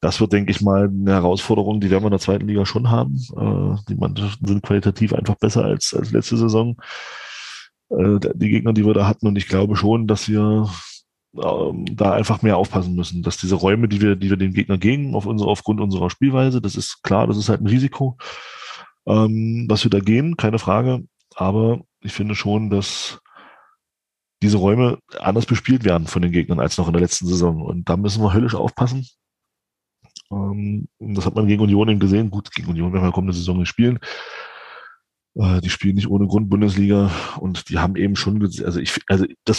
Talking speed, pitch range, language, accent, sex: 190 wpm, 95-110 Hz, German, German, male